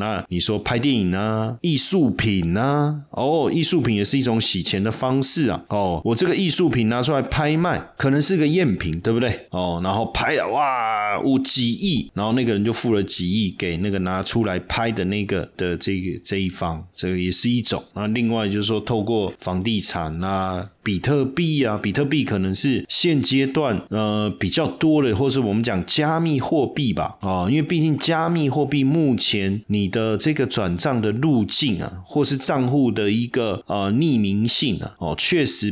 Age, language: 30-49, Chinese